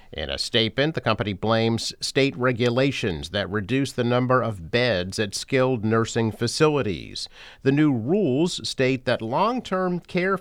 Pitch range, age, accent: 100-135 Hz, 50-69, American